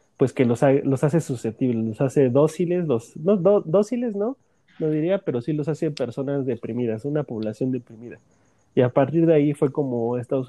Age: 30-49